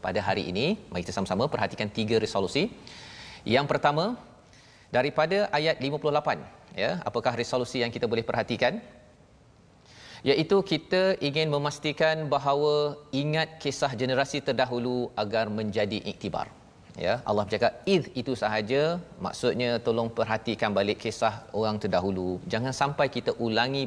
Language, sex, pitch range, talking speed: Malayalam, male, 115-145 Hz, 125 wpm